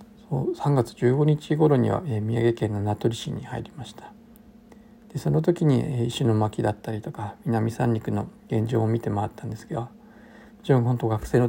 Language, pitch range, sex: Japanese, 115-185 Hz, male